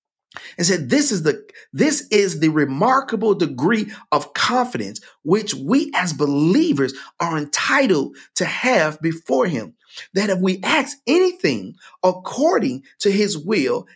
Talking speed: 135 wpm